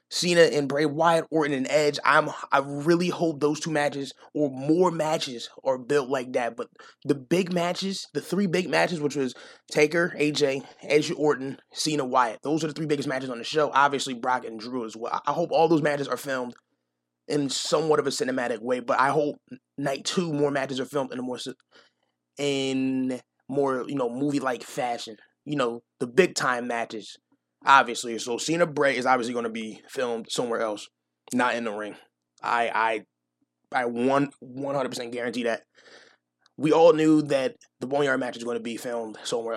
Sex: male